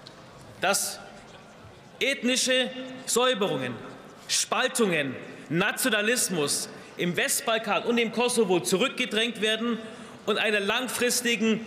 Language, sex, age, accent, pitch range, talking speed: German, male, 40-59, German, 200-240 Hz, 75 wpm